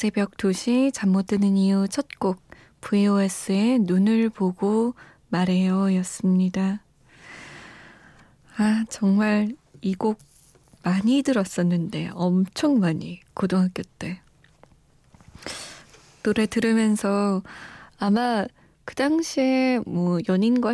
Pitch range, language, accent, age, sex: 185-230 Hz, Korean, native, 20-39, female